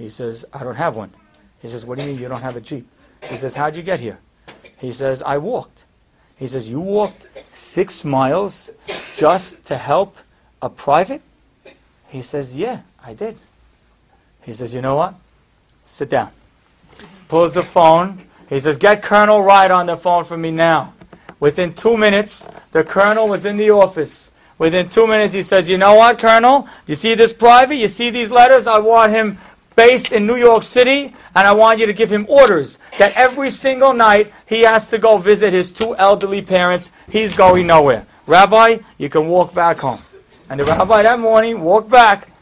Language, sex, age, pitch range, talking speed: English, male, 40-59, 155-215 Hz, 190 wpm